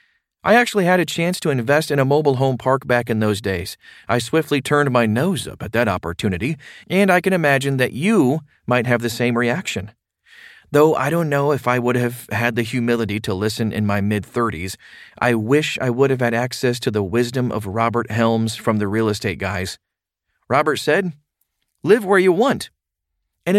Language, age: English, 40-59